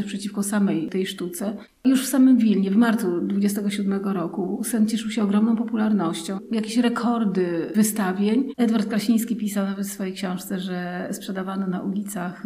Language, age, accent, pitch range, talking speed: Polish, 30-49, native, 190-220 Hz, 150 wpm